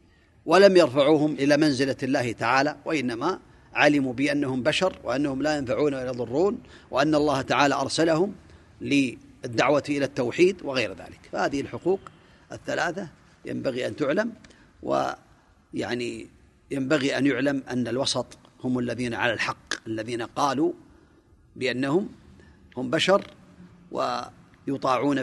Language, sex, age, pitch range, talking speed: Arabic, male, 40-59, 125-150 Hz, 110 wpm